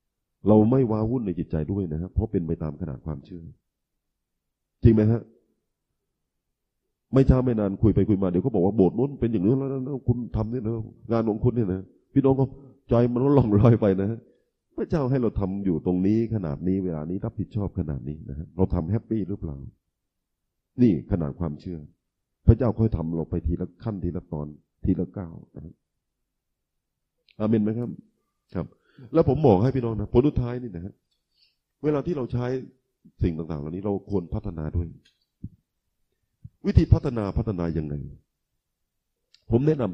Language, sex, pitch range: Thai, male, 85-115 Hz